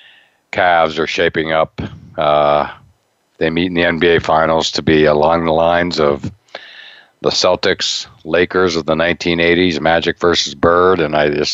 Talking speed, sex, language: 150 wpm, male, English